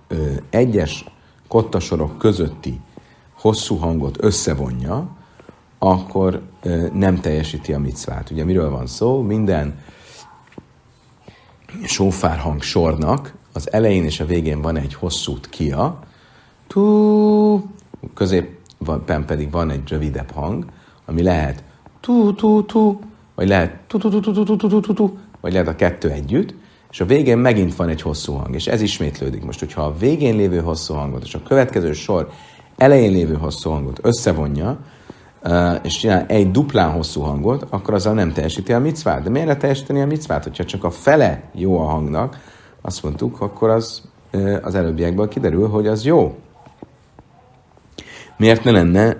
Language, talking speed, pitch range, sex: Hungarian, 135 wpm, 80-115 Hz, male